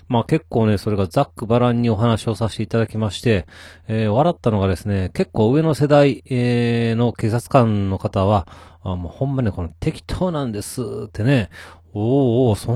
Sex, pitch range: male, 100-130 Hz